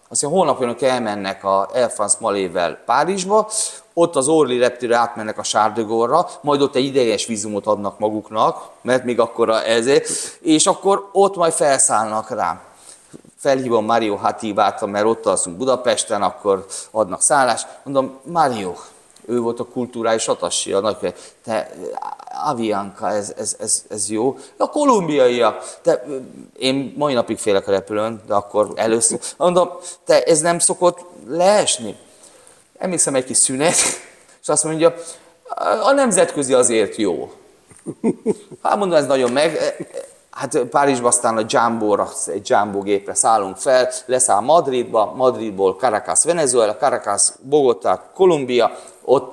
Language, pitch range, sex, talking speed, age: Hungarian, 110-175 Hz, male, 135 wpm, 30-49